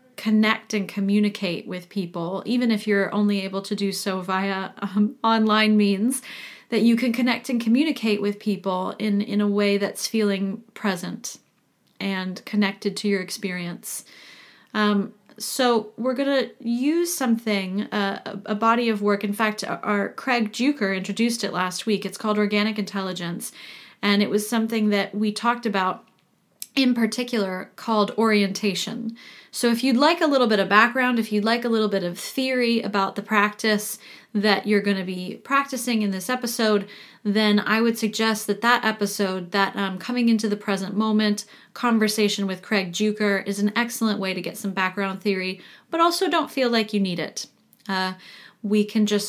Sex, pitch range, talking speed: female, 200-230 Hz, 175 wpm